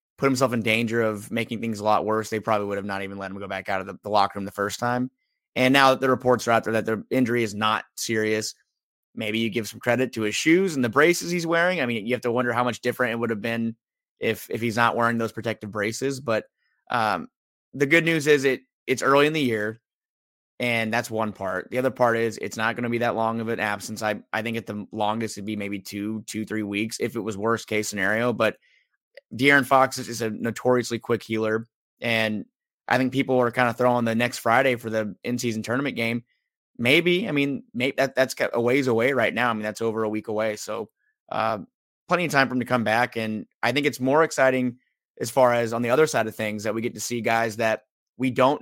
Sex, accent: male, American